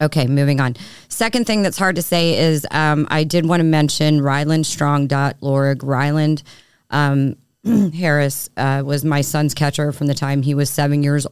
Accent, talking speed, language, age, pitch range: American, 175 wpm, English, 30-49, 135-150 Hz